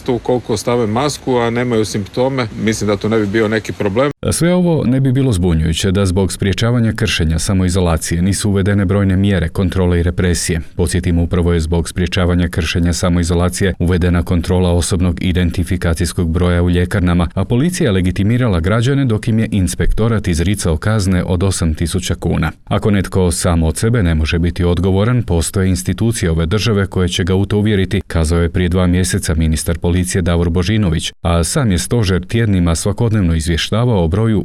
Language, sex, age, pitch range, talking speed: Croatian, male, 40-59, 85-105 Hz, 160 wpm